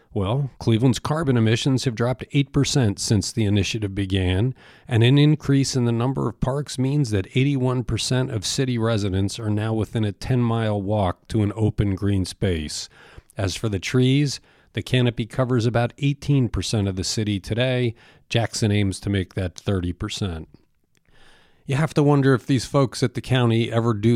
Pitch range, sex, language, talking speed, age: 100-125 Hz, male, English, 165 wpm, 40-59